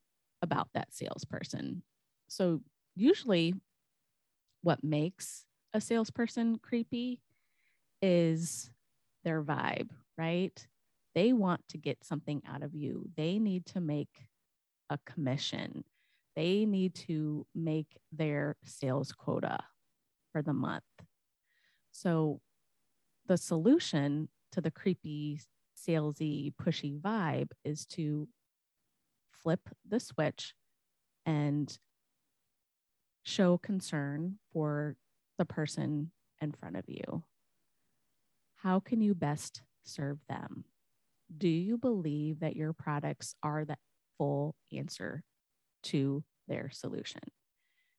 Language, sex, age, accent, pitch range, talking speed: English, female, 30-49, American, 150-185 Hz, 100 wpm